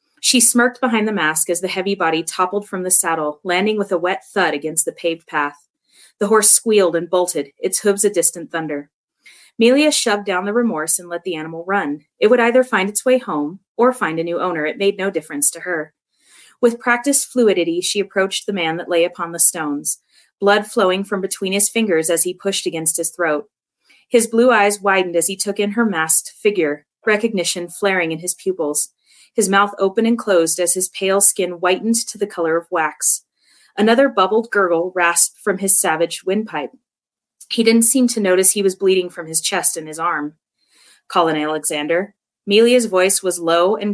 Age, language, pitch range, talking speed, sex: 30-49, English, 165-210 Hz, 195 wpm, female